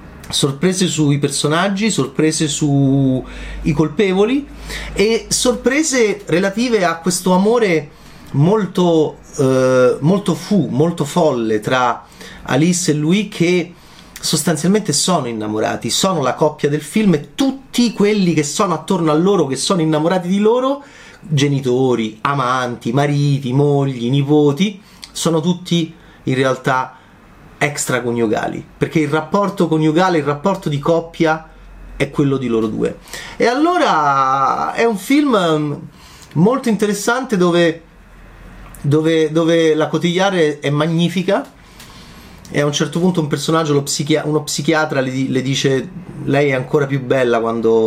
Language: Italian